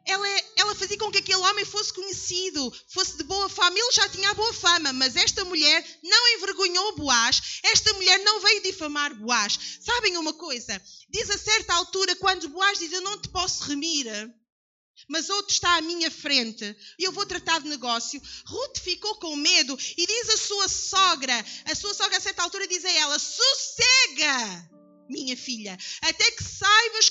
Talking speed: 180 wpm